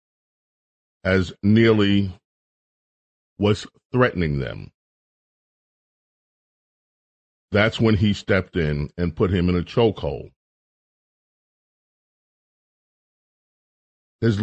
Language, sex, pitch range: English, male, 90-110 Hz